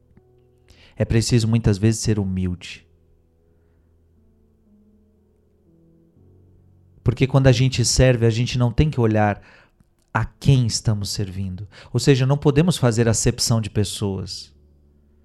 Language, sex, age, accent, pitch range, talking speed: Portuguese, male, 40-59, Brazilian, 95-155 Hz, 115 wpm